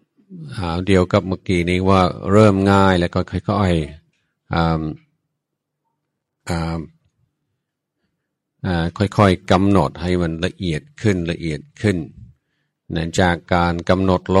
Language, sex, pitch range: Thai, male, 85-95 Hz